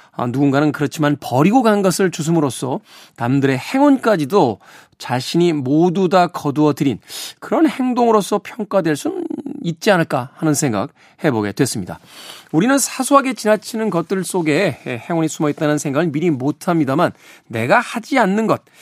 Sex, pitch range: male, 145-210 Hz